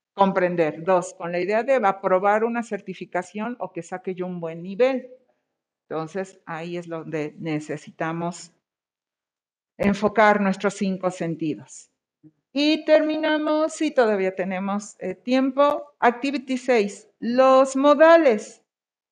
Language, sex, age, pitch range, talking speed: Spanish, female, 50-69, 185-260 Hz, 115 wpm